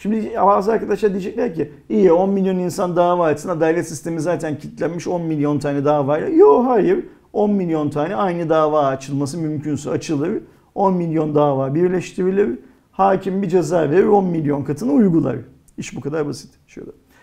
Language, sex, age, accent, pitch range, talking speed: Turkish, male, 50-69, native, 145-190 Hz, 165 wpm